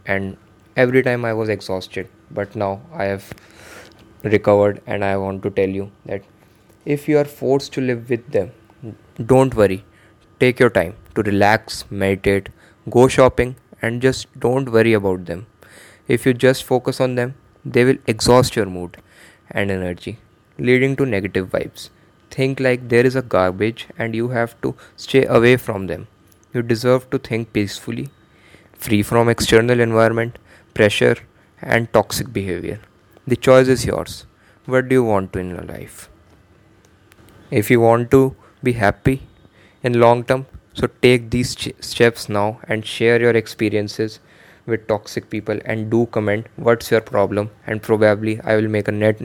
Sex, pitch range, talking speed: male, 100-125 Hz, 160 wpm